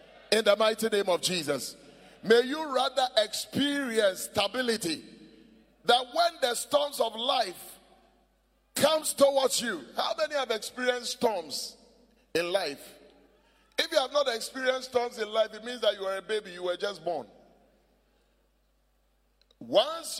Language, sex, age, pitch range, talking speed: English, male, 30-49, 195-260 Hz, 140 wpm